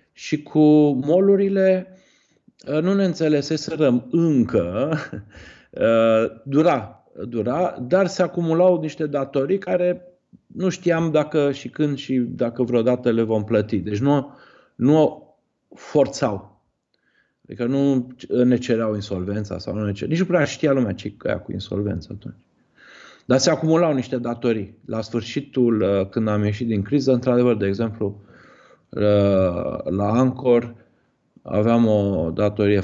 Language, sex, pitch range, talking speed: Romanian, male, 105-140 Hz, 125 wpm